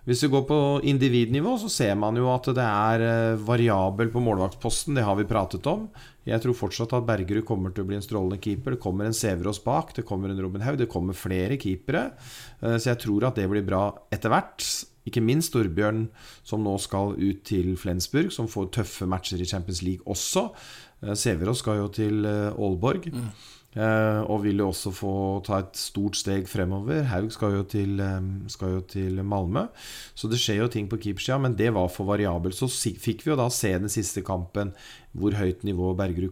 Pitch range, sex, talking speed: 100-120 Hz, male, 190 wpm